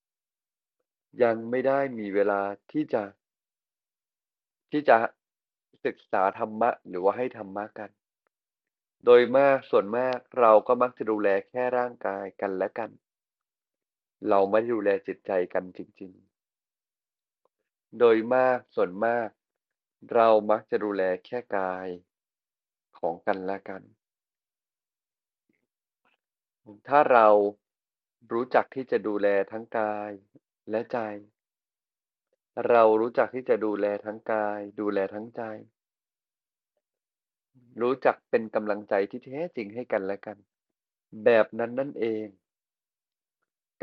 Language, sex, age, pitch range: Thai, male, 20-39, 100-125 Hz